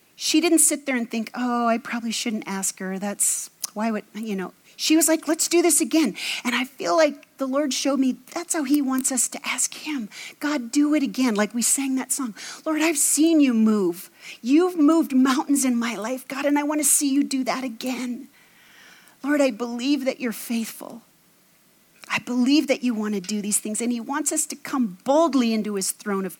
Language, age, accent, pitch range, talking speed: English, 40-59, American, 225-295 Hz, 220 wpm